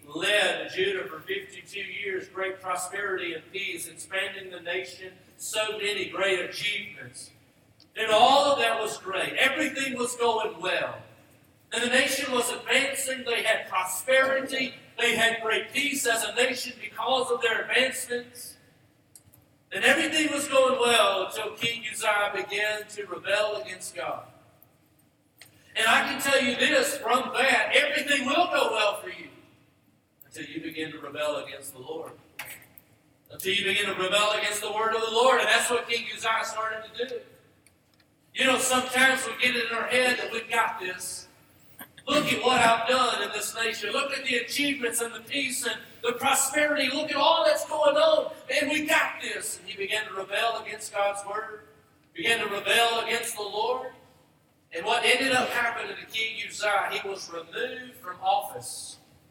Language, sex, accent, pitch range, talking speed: English, male, American, 205-260 Hz, 170 wpm